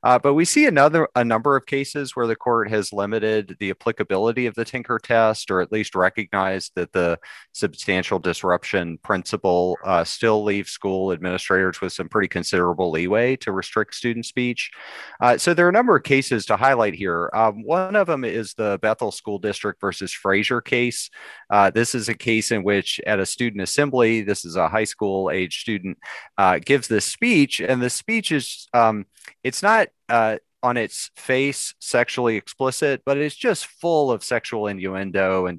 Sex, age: male, 30-49